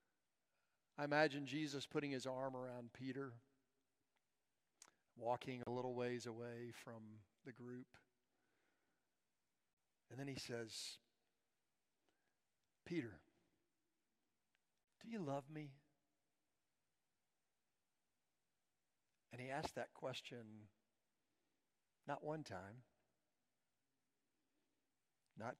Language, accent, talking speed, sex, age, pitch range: English, American, 80 wpm, male, 50-69, 120-165 Hz